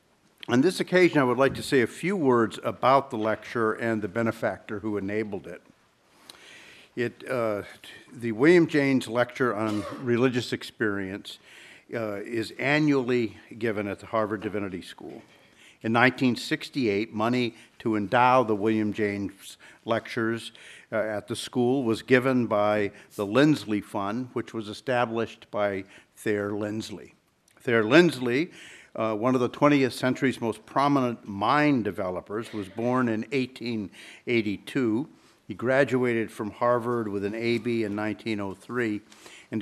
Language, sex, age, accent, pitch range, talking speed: English, male, 50-69, American, 105-130 Hz, 135 wpm